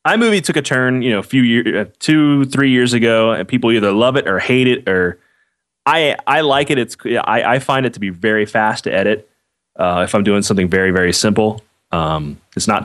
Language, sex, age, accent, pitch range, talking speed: English, male, 20-39, American, 95-130 Hz, 225 wpm